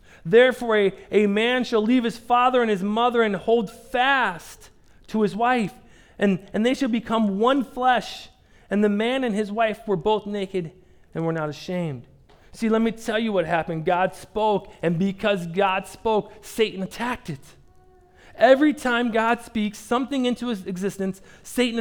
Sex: male